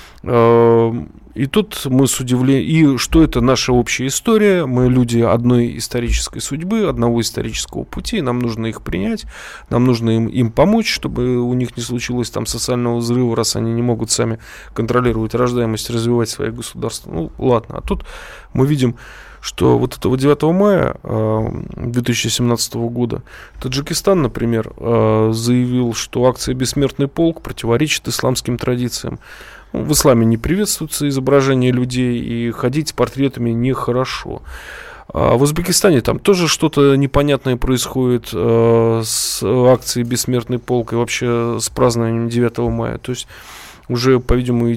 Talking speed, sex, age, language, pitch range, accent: 135 wpm, male, 20-39, Russian, 115-130 Hz, native